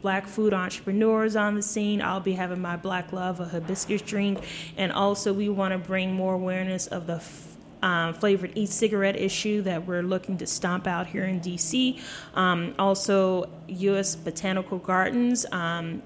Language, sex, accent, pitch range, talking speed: English, female, American, 175-200 Hz, 170 wpm